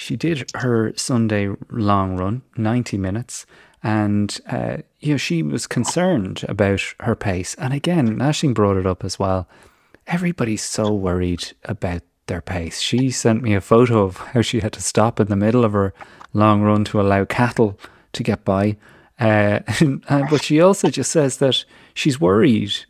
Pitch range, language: 95-120 Hz, English